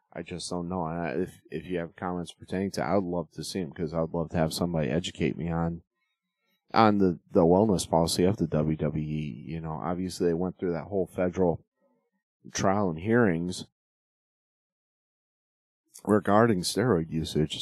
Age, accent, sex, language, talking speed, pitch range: 30-49, American, male, English, 170 wpm, 80-95 Hz